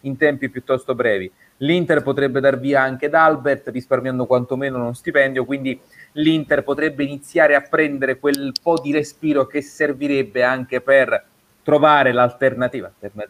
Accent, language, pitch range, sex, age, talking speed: native, Italian, 120-145 Hz, male, 30-49, 140 wpm